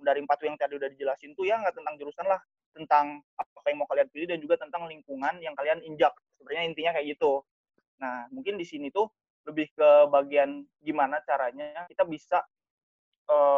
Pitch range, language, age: 145-195 Hz, Indonesian, 20-39